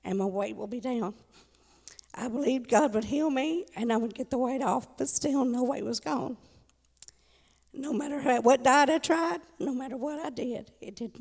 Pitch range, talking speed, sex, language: 245-305 Hz, 205 wpm, female, English